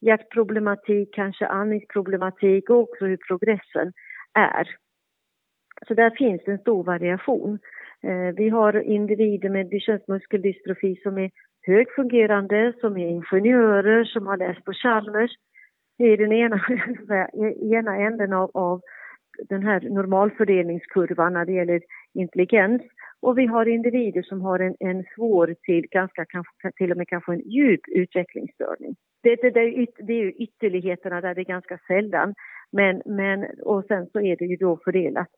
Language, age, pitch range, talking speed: Swedish, 40-59, 180-225 Hz, 150 wpm